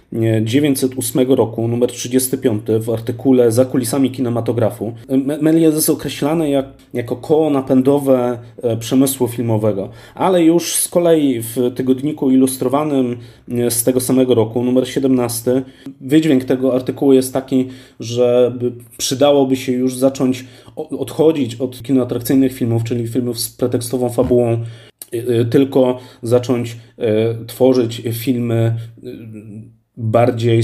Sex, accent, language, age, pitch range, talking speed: male, native, Polish, 30-49, 115-130 Hz, 110 wpm